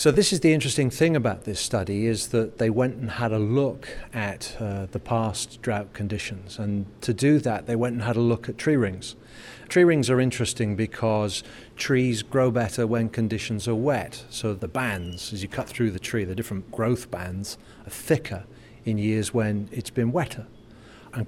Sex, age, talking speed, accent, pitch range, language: male, 40-59, 195 wpm, British, 110-130 Hz, English